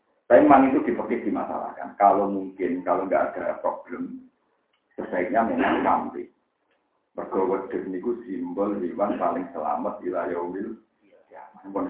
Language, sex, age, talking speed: Indonesian, male, 50-69, 115 wpm